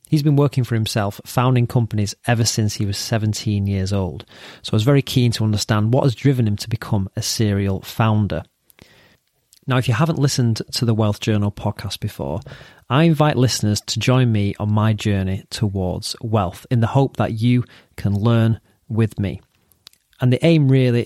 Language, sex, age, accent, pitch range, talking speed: English, male, 30-49, British, 105-130 Hz, 185 wpm